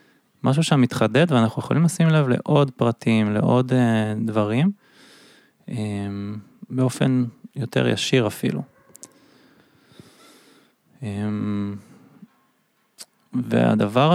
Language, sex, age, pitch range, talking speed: Hebrew, male, 20-39, 115-145 Hz, 80 wpm